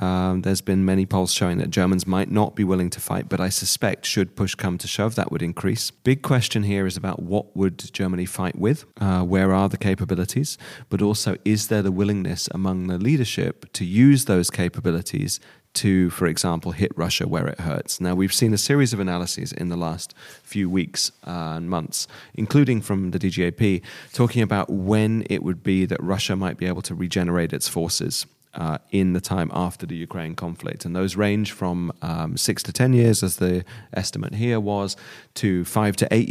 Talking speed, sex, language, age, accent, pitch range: 200 wpm, male, English, 30-49, British, 90-105 Hz